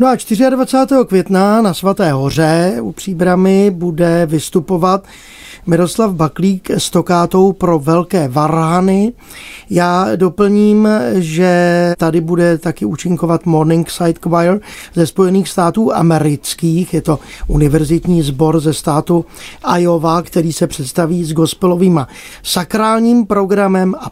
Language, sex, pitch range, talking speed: Czech, male, 160-190 Hz, 115 wpm